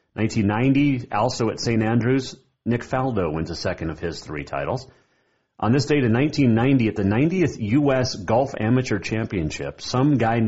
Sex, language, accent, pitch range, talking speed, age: male, English, American, 85-130 Hz, 160 wpm, 30-49